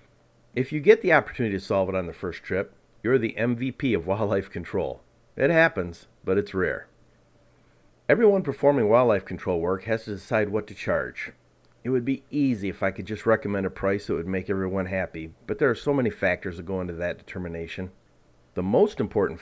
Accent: American